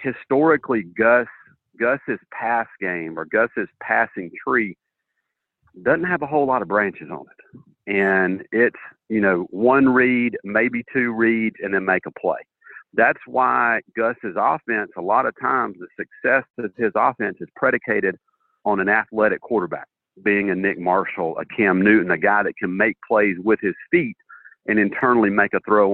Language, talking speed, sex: English, 165 wpm, male